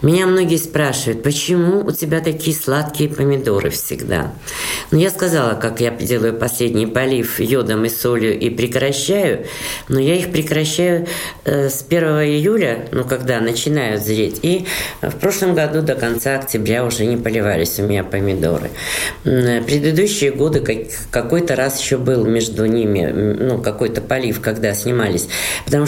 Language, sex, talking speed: Russian, female, 140 wpm